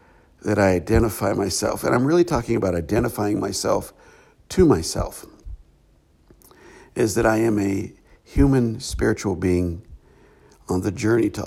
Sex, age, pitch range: male, 60-79, 85-115 Hz